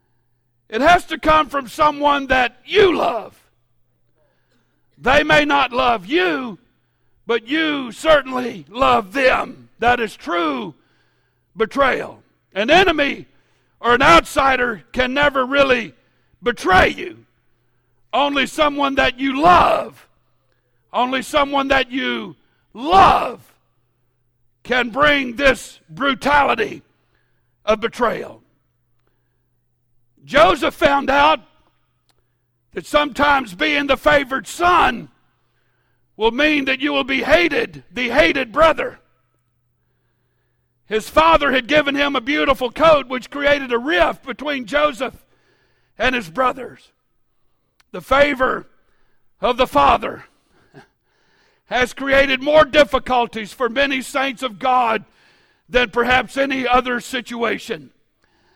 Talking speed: 105 wpm